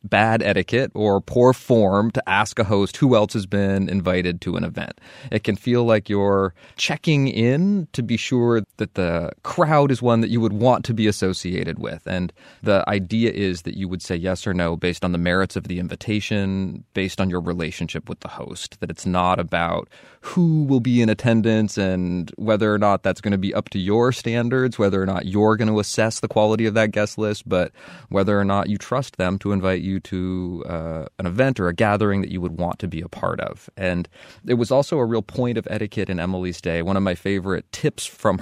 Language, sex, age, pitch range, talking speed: English, male, 30-49, 95-125 Hz, 225 wpm